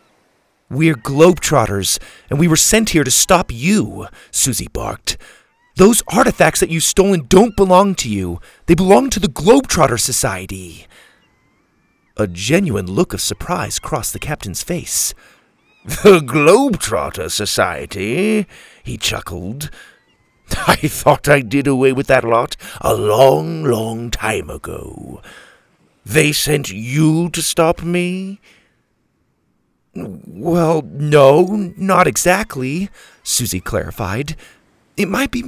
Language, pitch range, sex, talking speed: English, 120-185 Hz, male, 115 wpm